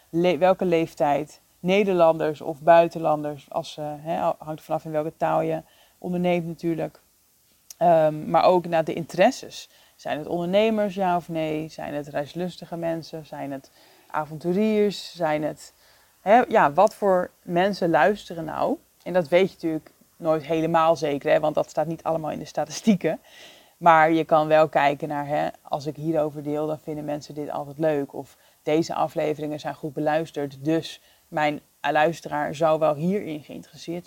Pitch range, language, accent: 150-175 Hz, Dutch, Dutch